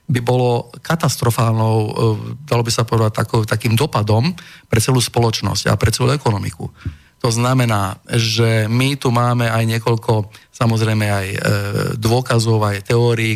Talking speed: 130 wpm